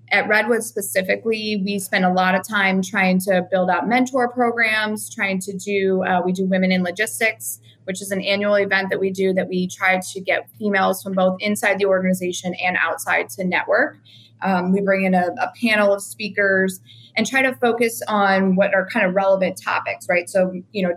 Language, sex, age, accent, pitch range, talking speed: English, female, 20-39, American, 185-210 Hz, 205 wpm